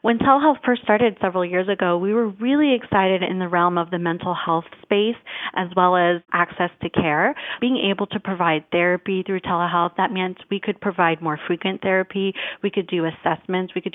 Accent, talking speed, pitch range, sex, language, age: American, 200 wpm, 180-210 Hz, female, English, 30-49